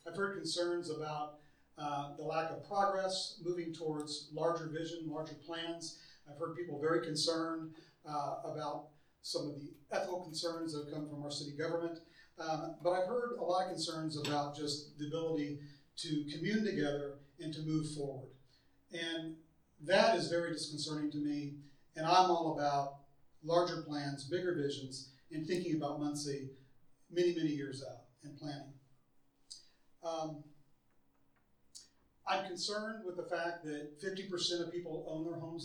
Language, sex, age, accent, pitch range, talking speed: English, male, 40-59, American, 145-170 Hz, 155 wpm